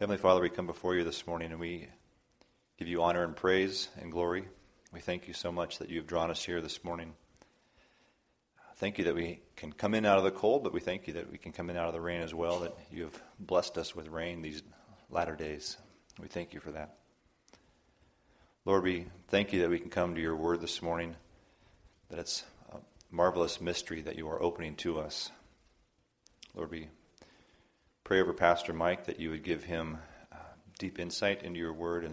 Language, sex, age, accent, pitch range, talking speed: English, male, 40-59, American, 80-90 Hz, 205 wpm